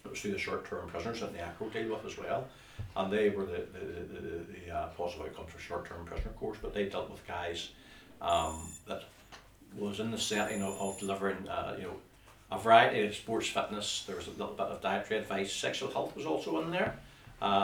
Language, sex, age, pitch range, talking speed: English, male, 60-79, 95-110 Hz, 230 wpm